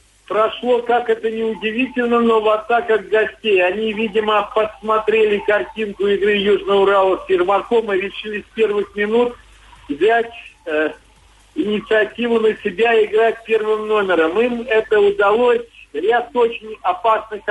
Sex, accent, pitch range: male, native, 205-245 Hz